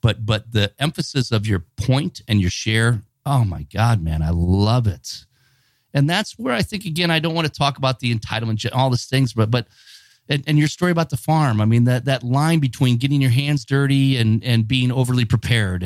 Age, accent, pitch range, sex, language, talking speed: 40-59, American, 110-140 Hz, male, English, 220 wpm